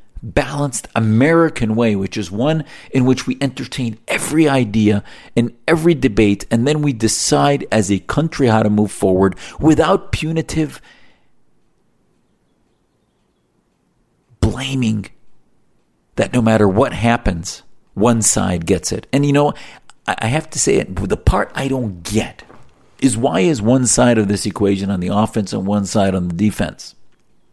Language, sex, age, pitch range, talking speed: English, male, 50-69, 110-145 Hz, 150 wpm